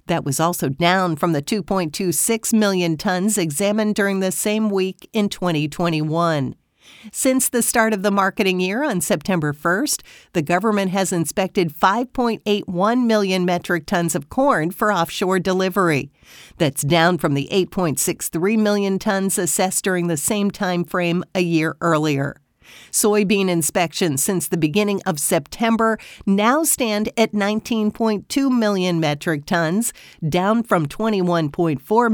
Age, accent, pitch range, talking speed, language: 50-69, American, 170-210 Hz, 135 wpm, English